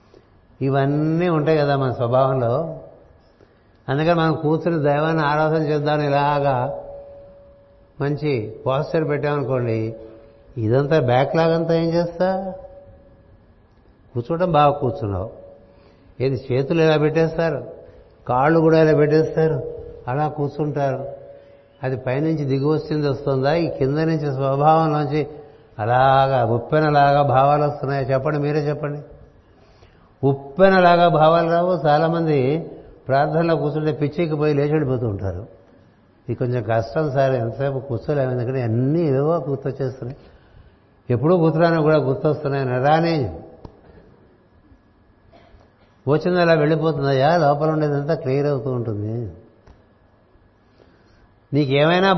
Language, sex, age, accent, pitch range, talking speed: Telugu, male, 60-79, native, 120-155 Hz, 100 wpm